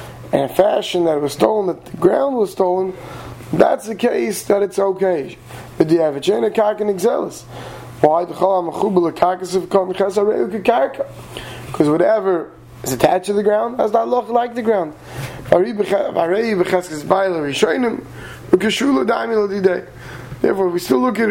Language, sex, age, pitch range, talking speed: English, male, 30-49, 160-215 Hz, 110 wpm